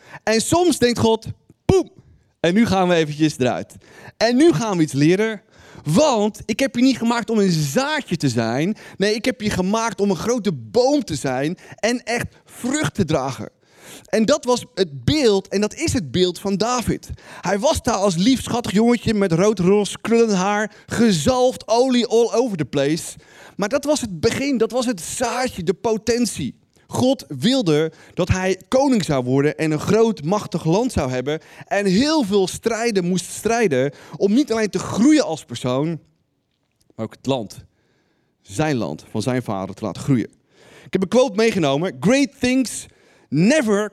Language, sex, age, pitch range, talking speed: Dutch, male, 30-49, 155-240 Hz, 180 wpm